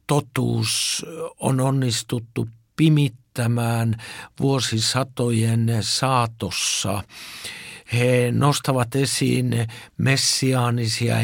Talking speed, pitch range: 55 wpm, 115-135 Hz